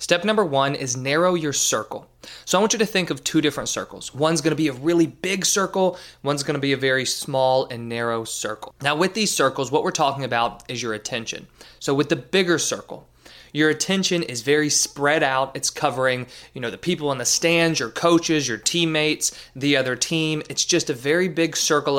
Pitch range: 120-155 Hz